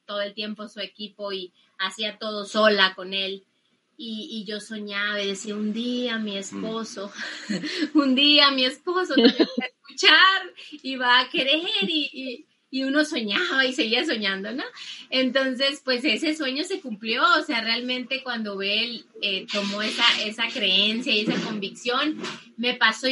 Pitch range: 215-265 Hz